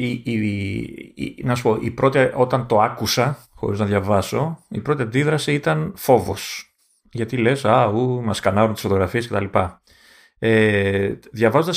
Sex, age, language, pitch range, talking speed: male, 30-49, Greek, 105-130 Hz, 160 wpm